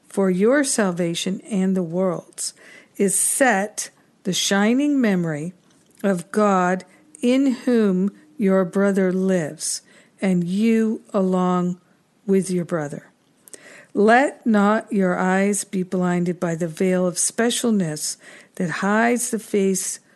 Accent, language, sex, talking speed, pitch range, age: American, English, female, 115 wpm, 180-225 Hz, 50-69